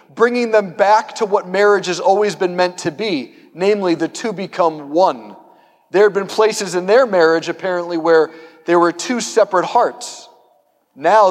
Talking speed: 170 wpm